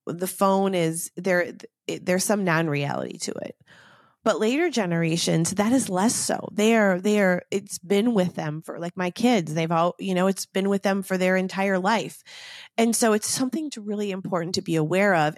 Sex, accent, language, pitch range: female, American, English, 170-205 Hz